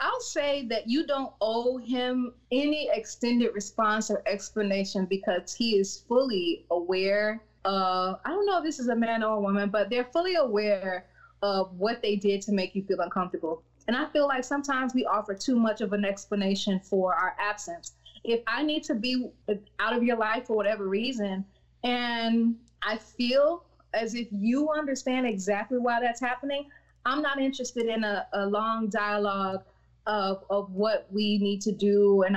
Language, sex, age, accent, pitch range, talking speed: English, female, 20-39, American, 195-240 Hz, 180 wpm